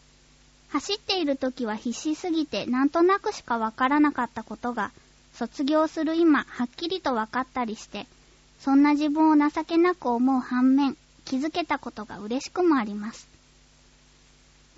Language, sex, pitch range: Japanese, male, 250-320 Hz